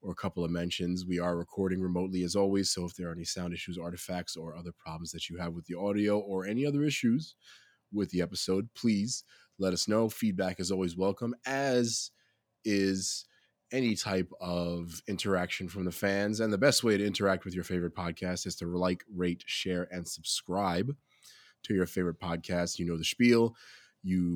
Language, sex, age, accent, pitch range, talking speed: English, male, 20-39, American, 85-110 Hz, 190 wpm